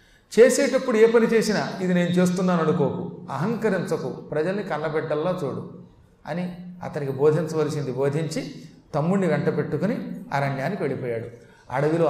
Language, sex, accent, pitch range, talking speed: Telugu, male, native, 145-200 Hz, 110 wpm